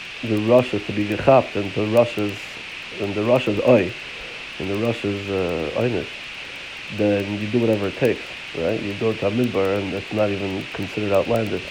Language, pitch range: Hebrew, 100-115 Hz